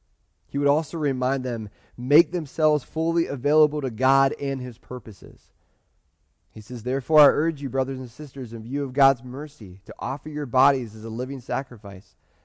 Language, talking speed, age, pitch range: English, 175 wpm, 30-49, 90-135 Hz